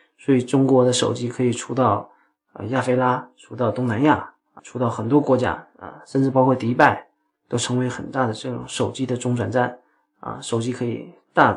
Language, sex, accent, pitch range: Chinese, male, native, 125-145 Hz